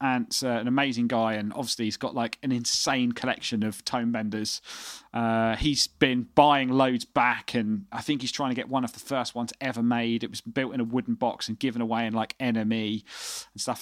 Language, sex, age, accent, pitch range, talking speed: English, male, 30-49, British, 115-140 Hz, 220 wpm